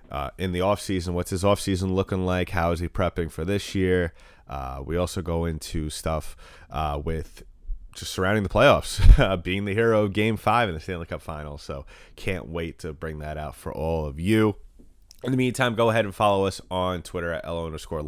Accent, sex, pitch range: American, male, 85-105 Hz